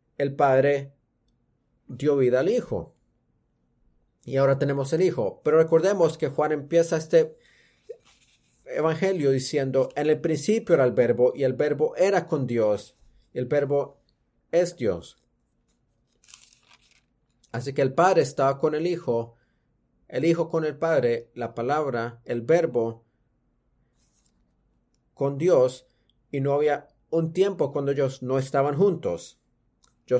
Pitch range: 125-165 Hz